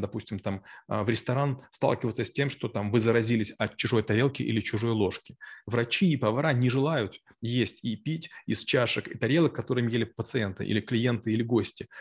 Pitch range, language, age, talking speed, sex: 110-135 Hz, Russian, 30-49, 175 wpm, male